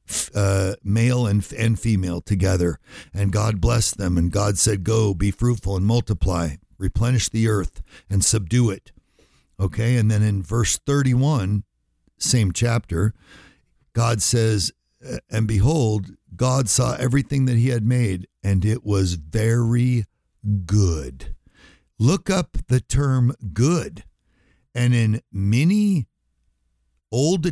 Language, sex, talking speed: English, male, 125 wpm